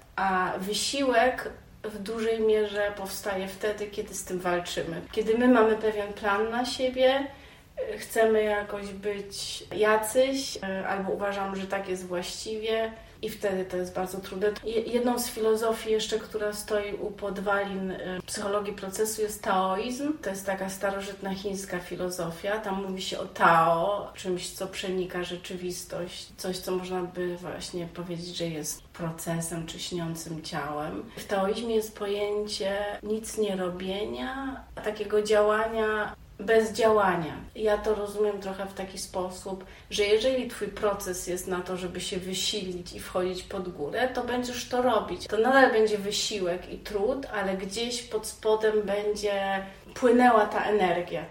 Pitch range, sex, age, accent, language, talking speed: 185-220 Hz, female, 30-49, native, Polish, 145 wpm